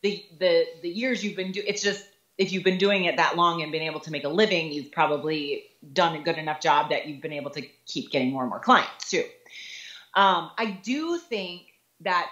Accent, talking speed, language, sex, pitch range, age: American, 230 wpm, English, female, 170-235 Hz, 30-49